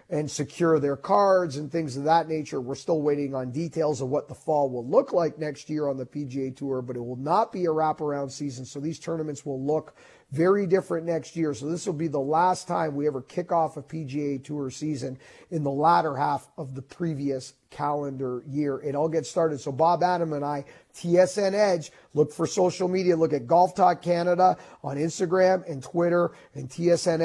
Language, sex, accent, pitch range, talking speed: English, male, American, 140-180 Hz, 205 wpm